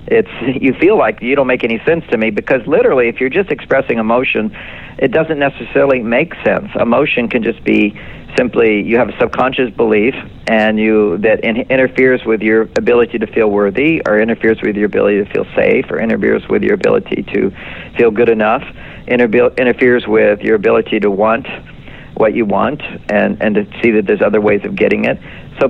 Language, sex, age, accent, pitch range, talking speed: English, male, 50-69, American, 110-130 Hz, 190 wpm